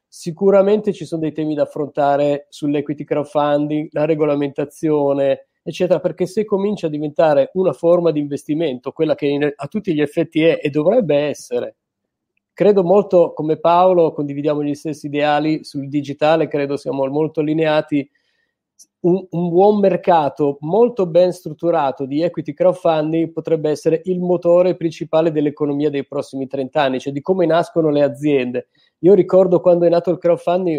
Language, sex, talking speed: Italian, male, 155 wpm